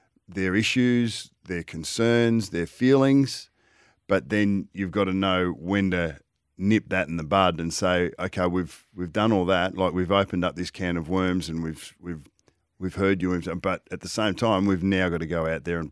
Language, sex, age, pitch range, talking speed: English, male, 50-69, 85-95 Hz, 205 wpm